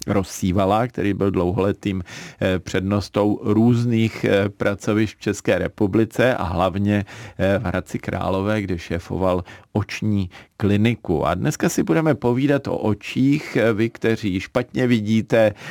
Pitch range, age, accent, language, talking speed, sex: 95-110 Hz, 50-69, native, Czech, 115 wpm, male